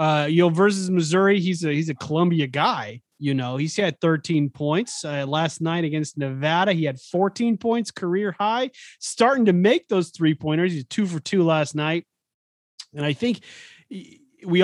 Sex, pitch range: male, 135-180 Hz